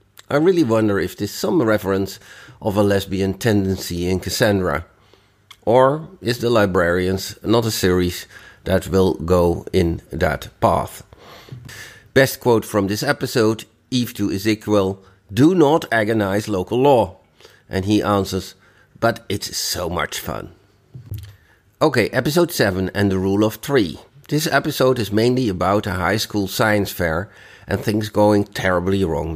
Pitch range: 95-115 Hz